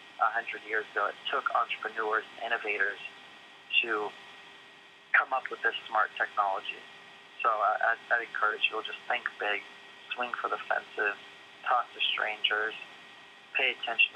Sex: male